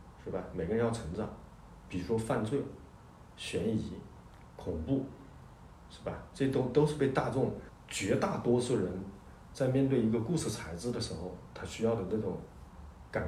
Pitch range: 95-140 Hz